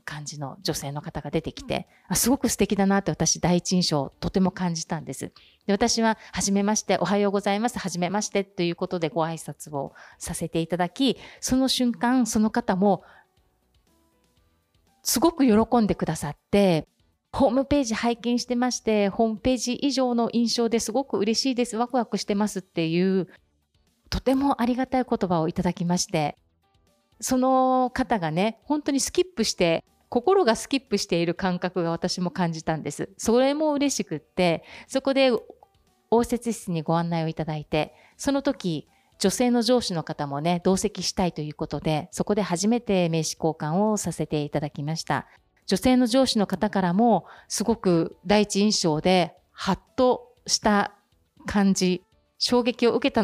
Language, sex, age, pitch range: Japanese, female, 40-59, 165-235 Hz